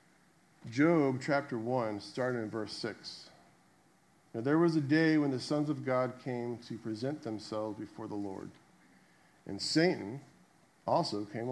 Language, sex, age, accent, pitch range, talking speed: English, male, 50-69, American, 120-160 Hz, 145 wpm